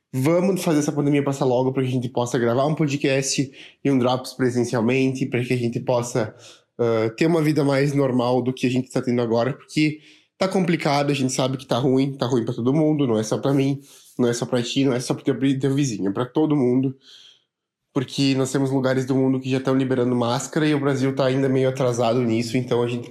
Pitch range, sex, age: 115-135 Hz, male, 20-39